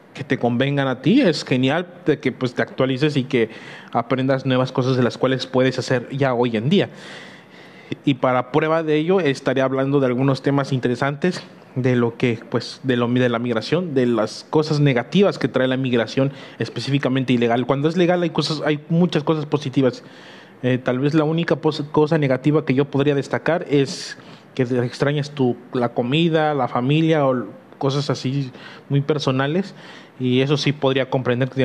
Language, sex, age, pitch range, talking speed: Spanish, male, 30-49, 130-150 Hz, 180 wpm